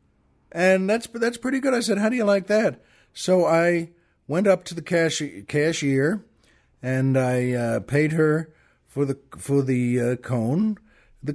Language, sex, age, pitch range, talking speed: English, male, 60-79, 135-195 Hz, 165 wpm